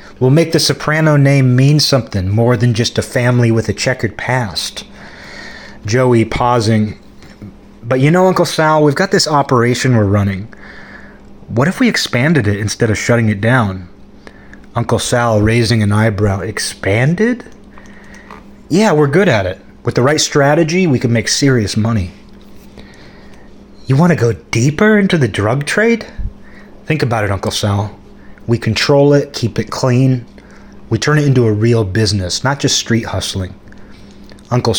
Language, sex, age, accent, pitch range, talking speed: English, male, 30-49, American, 110-140 Hz, 160 wpm